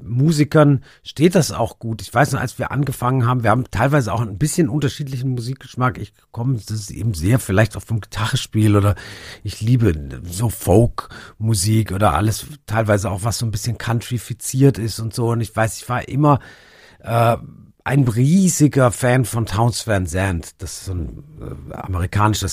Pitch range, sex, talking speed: 100-120 Hz, male, 175 wpm